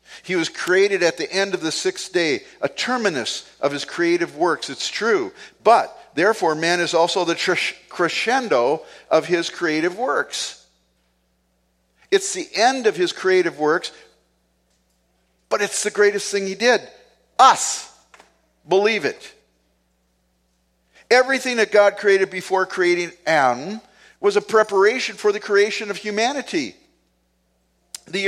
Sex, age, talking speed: male, 50-69, 130 wpm